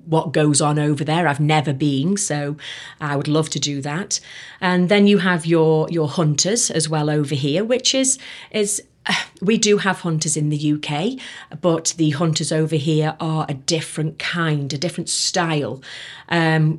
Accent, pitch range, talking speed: British, 150-175 Hz, 175 wpm